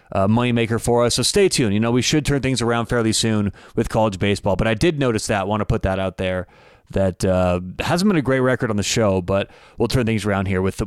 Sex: male